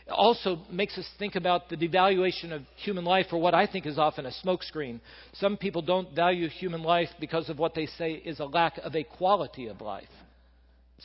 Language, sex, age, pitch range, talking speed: English, male, 50-69, 130-180 Hz, 205 wpm